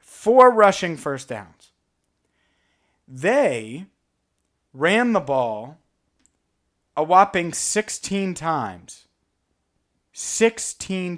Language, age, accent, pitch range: English, 30-49, American, 130-175 Hz